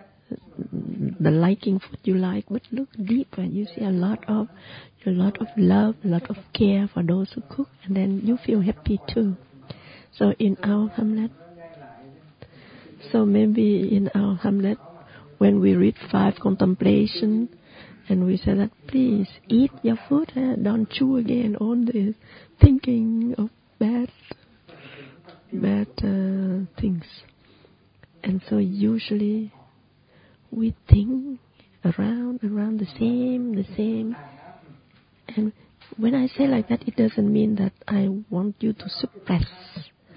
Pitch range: 190-230 Hz